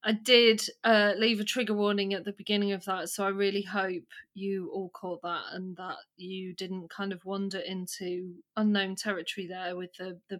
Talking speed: 195 wpm